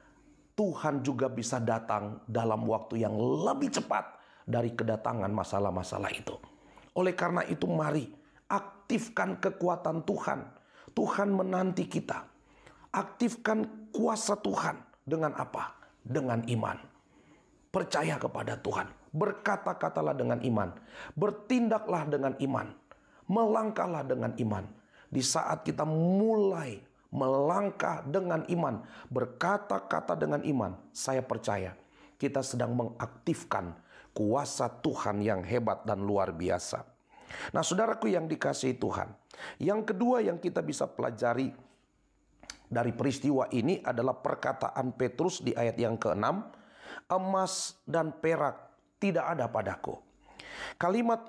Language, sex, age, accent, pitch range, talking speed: Indonesian, male, 40-59, native, 115-190 Hz, 110 wpm